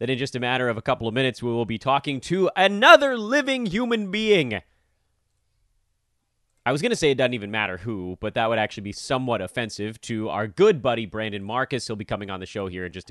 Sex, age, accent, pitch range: male, 30-49, American, 105-140 Hz